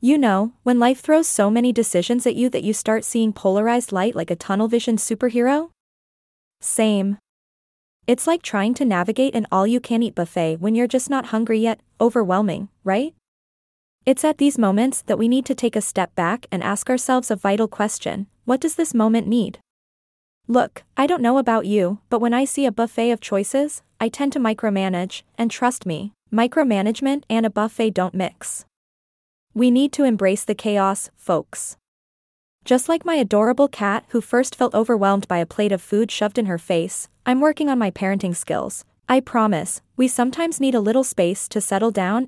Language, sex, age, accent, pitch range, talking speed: English, female, 20-39, American, 200-250 Hz, 190 wpm